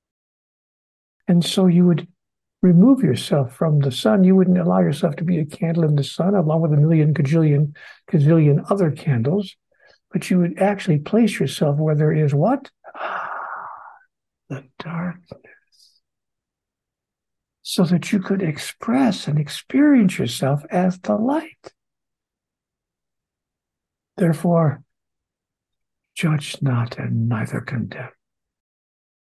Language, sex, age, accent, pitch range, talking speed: English, male, 60-79, American, 135-190 Hz, 120 wpm